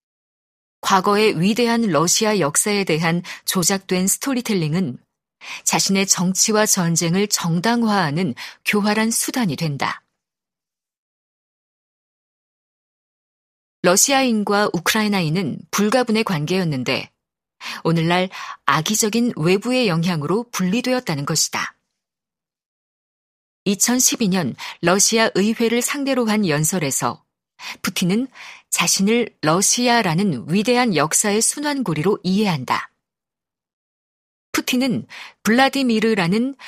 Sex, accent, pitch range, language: female, native, 180-235 Hz, Korean